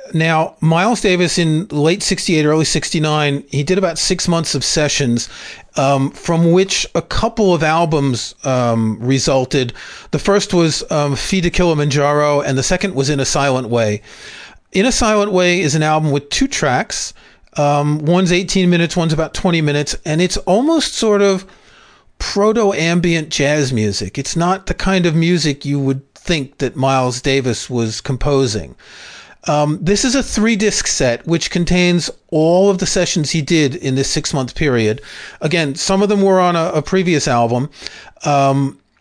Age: 40-59